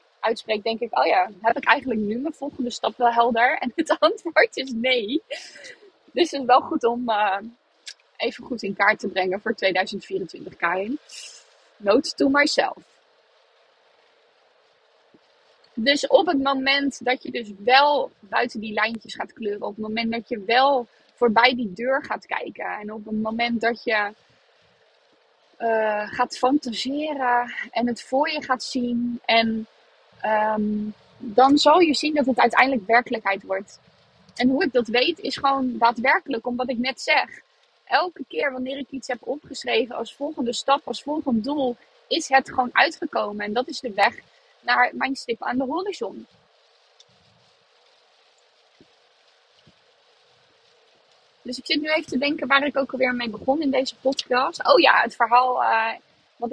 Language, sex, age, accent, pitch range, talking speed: Dutch, female, 20-39, Dutch, 230-285 Hz, 160 wpm